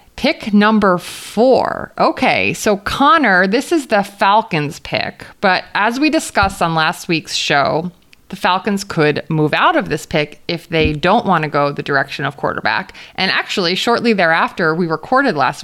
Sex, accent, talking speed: female, American, 170 wpm